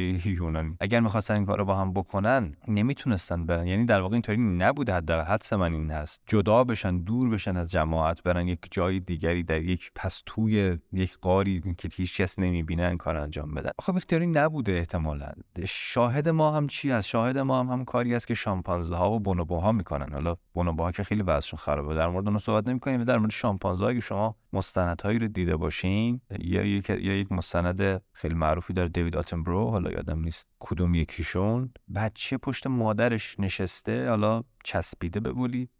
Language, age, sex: Persian, 20-39, male